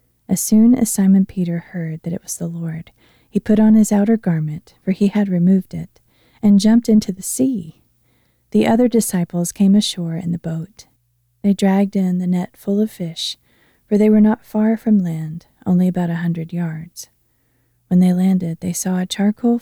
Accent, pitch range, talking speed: American, 165-205 Hz, 190 wpm